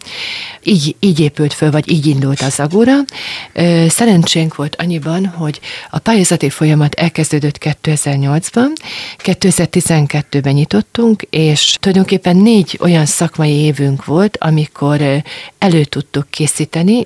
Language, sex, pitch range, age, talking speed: Hungarian, female, 145-175 Hz, 40-59, 110 wpm